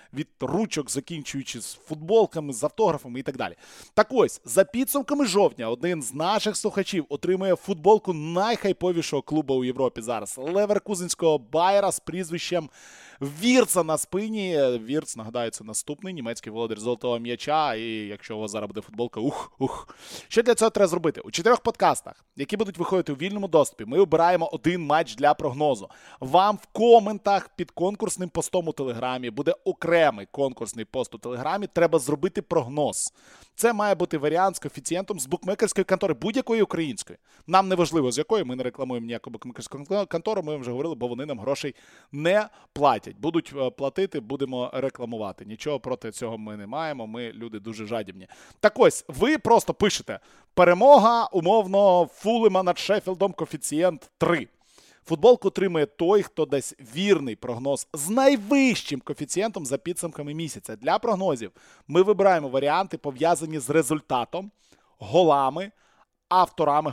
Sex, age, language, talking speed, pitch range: male, 20-39, Ukrainian, 145 wpm, 140-195 Hz